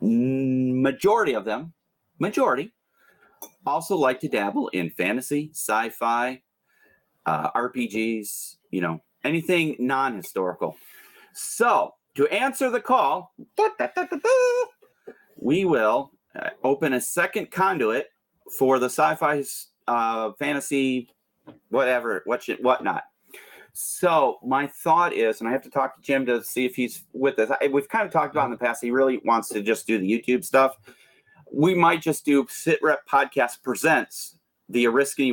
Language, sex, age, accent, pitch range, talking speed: English, male, 40-59, American, 110-155 Hz, 135 wpm